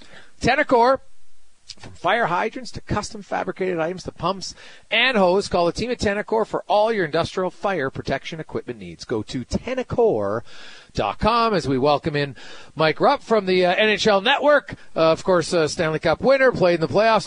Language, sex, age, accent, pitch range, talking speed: English, male, 40-59, American, 155-205 Hz, 170 wpm